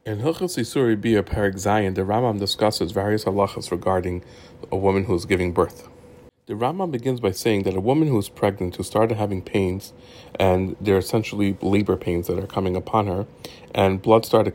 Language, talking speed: English, 190 wpm